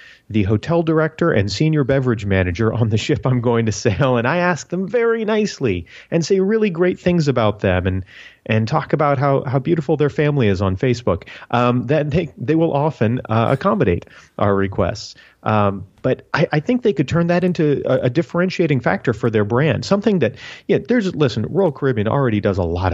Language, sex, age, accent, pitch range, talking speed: English, male, 30-49, American, 105-145 Hz, 200 wpm